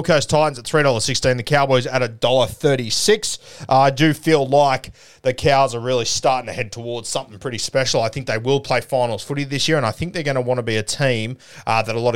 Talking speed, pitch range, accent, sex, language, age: 235 wpm, 110-145 Hz, Australian, male, English, 30-49